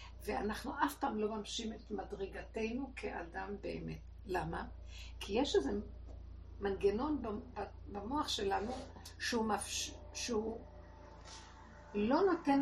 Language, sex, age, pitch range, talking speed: Hebrew, female, 60-79, 200-245 Hz, 100 wpm